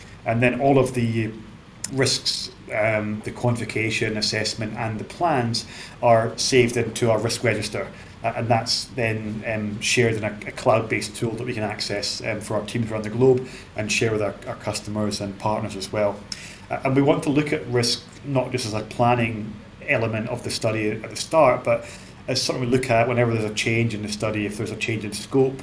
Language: English